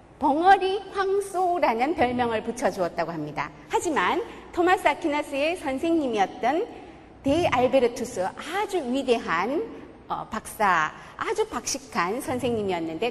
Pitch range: 240-355 Hz